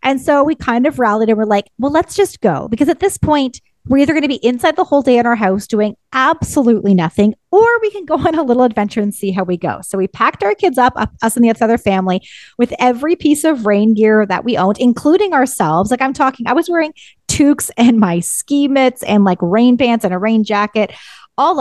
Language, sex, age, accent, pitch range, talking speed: English, female, 30-49, American, 210-300 Hz, 240 wpm